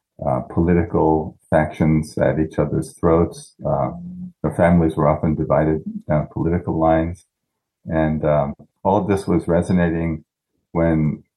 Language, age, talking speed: English, 50-69, 125 wpm